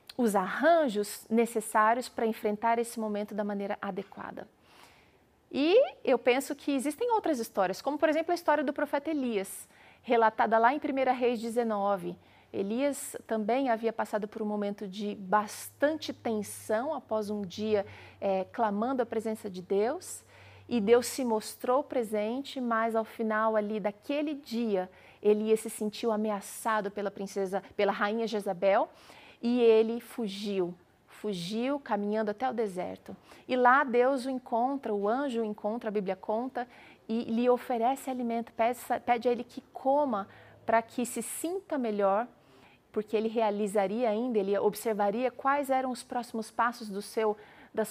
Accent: Brazilian